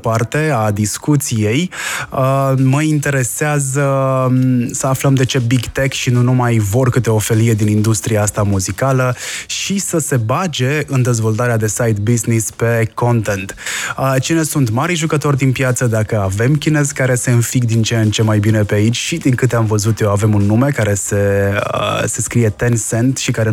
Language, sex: Romanian, male